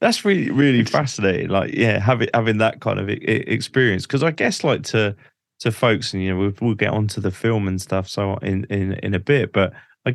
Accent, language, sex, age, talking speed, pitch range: British, English, male, 20-39, 220 wpm, 95-120 Hz